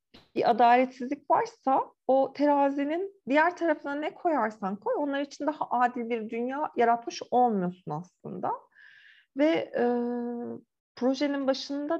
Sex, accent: female, native